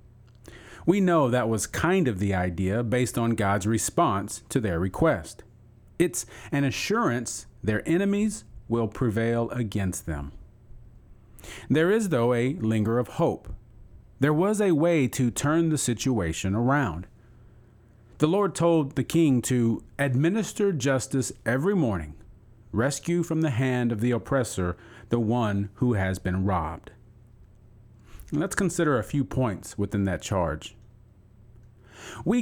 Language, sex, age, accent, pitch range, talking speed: English, male, 40-59, American, 105-135 Hz, 135 wpm